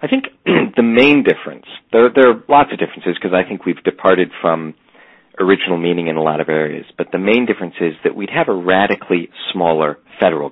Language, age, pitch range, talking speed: English, 40-59, 80-115 Hz, 205 wpm